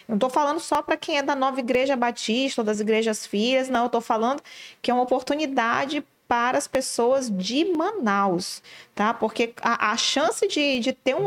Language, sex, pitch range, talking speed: Portuguese, female, 220-270 Hz, 195 wpm